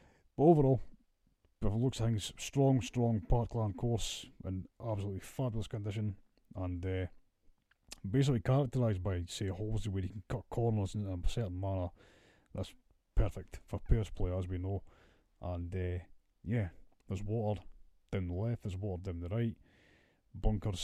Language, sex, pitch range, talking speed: English, male, 95-115 Hz, 155 wpm